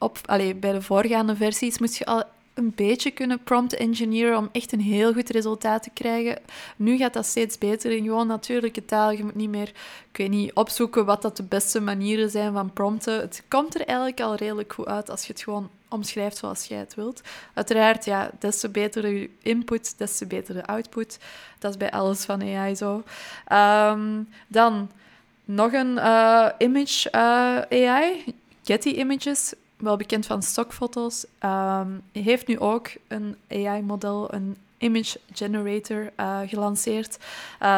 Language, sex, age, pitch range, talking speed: Dutch, female, 20-39, 205-235 Hz, 175 wpm